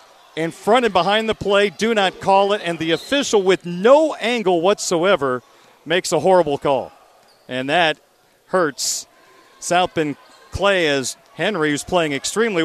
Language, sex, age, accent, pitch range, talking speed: English, male, 40-59, American, 170-225 Hz, 145 wpm